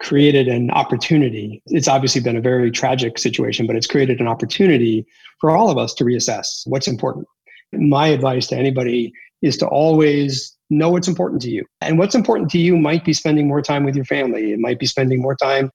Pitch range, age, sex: 130-155 Hz, 40-59, male